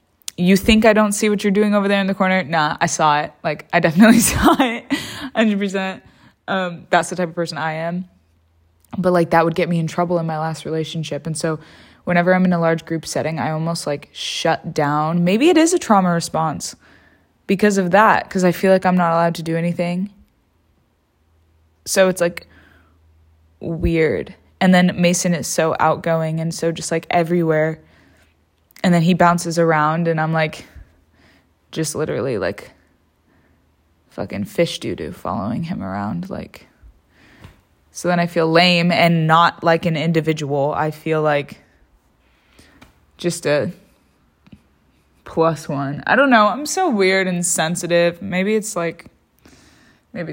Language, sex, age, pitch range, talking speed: English, female, 20-39, 150-185 Hz, 165 wpm